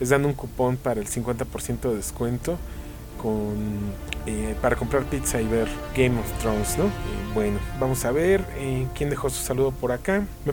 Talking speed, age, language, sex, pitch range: 190 wpm, 30-49, English, male, 125-170 Hz